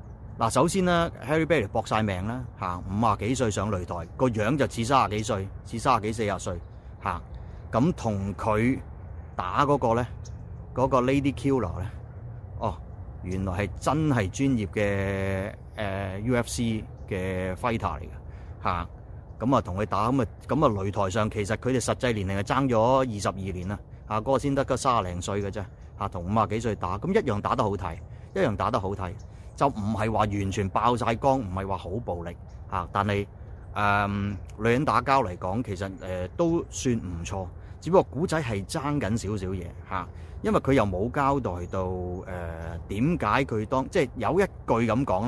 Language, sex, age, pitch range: Chinese, male, 30-49, 95-125 Hz